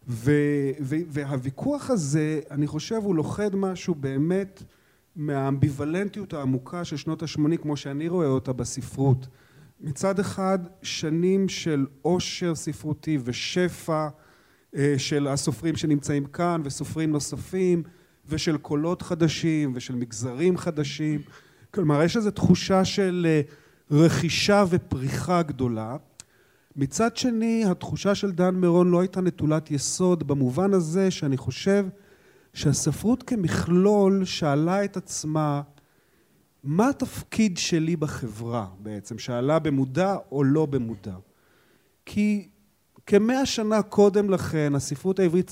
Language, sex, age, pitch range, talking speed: Hebrew, male, 40-59, 140-180 Hz, 110 wpm